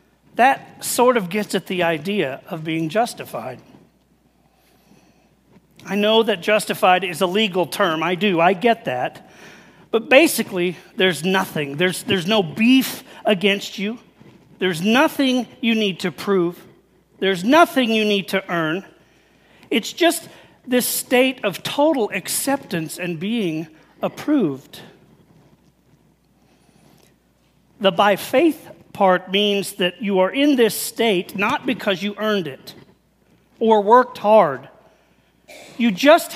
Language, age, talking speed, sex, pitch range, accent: English, 40-59, 125 wpm, male, 190-250 Hz, American